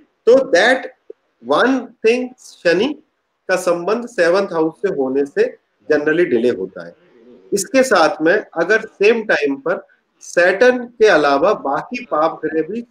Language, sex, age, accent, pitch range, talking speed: Hindi, male, 40-59, native, 175-260 Hz, 130 wpm